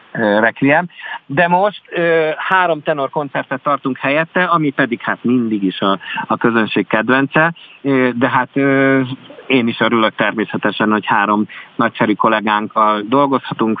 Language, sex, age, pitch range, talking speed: Hungarian, male, 50-69, 105-130 Hz, 115 wpm